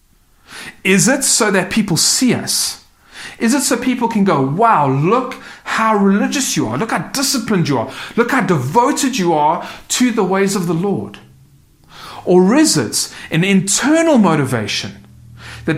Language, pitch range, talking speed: English, 145-215 Hz, 160 wpm